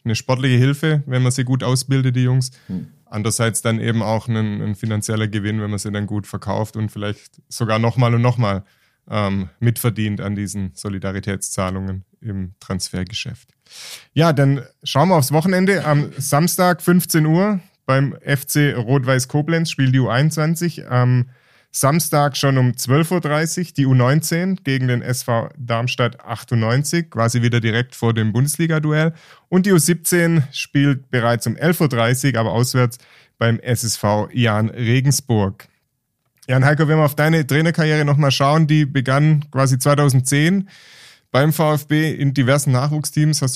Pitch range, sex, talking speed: 115-150 Hz, male, 145 wpm